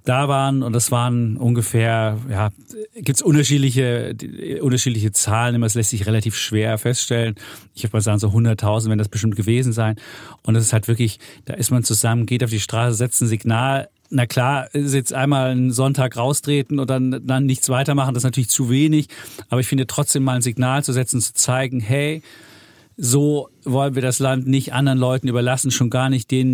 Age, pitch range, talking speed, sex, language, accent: 40-59, 115-135 Hz, 200 wpm, male, German, German